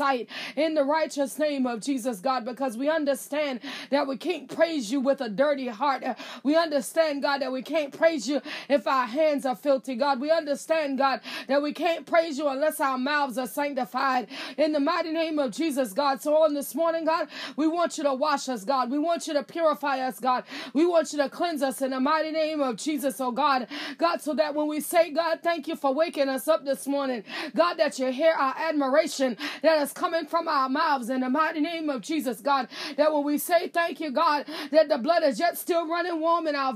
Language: English